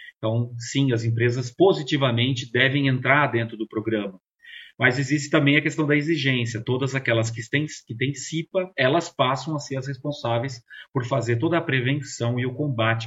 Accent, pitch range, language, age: Brazilian, 115-145 Hz, Portuguese, 30-49